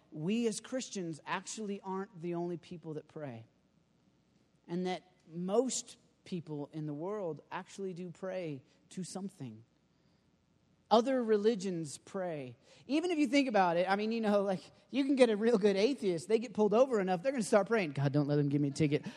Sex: male